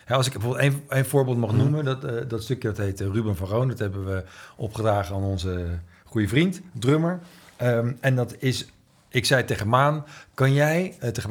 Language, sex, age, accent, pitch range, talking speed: Dutch, male, 50-69, Dutch, 105-140 Hz, 195 wpm